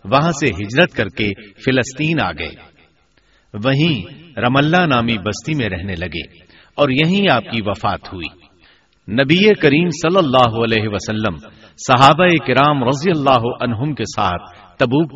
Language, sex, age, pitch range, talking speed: Urdu, male, 50-69, 110-155 Hz, 135 wpm